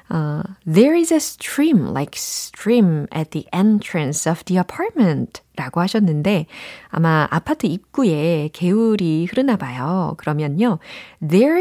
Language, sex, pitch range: Korean, female, 160-230 Hz